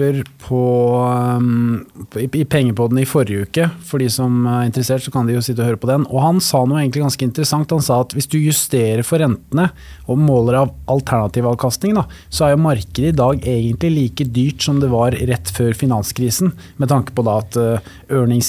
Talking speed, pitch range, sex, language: 205 wpm, 120-140 Hz, male, English